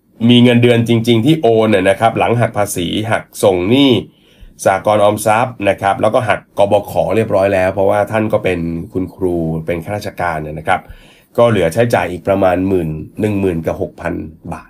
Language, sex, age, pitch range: Thai, male, 30-49, 95-125 Hz